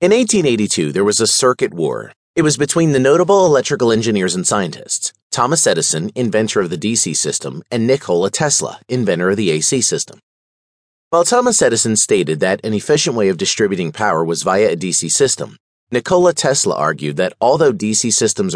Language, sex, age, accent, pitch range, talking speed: English, male, 30-49, American, 90-135 Hz, 175 wpm